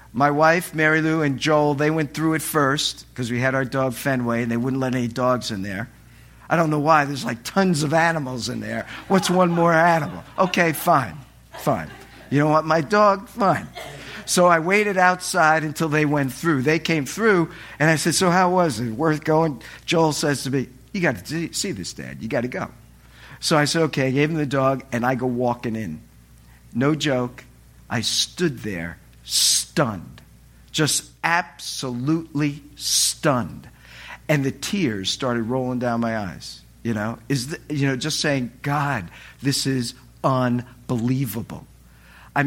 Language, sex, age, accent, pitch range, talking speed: English, male, 50-69, American, 115-155 Hz, 180 wpm